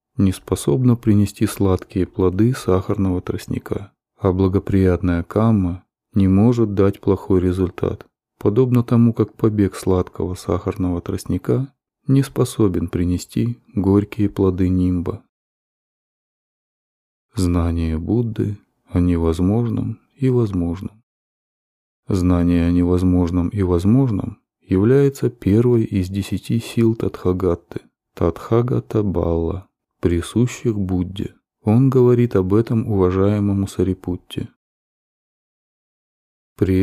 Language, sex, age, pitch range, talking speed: Russian, male, 30-49, 90-115 Hz, 90 wpm